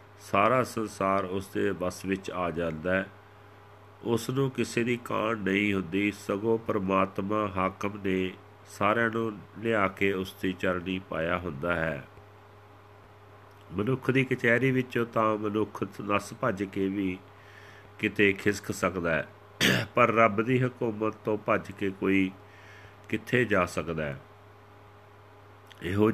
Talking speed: 125 wpm